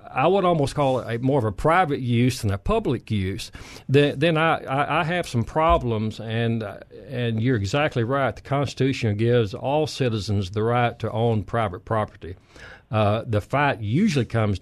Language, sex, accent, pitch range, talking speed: English, male, American, 105-130 Hz, 175 wpm